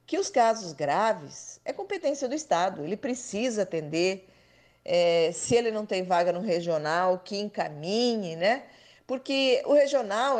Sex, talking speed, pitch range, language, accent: female, 145 wpm, 185-245 Hz, Portuguese, Brazilian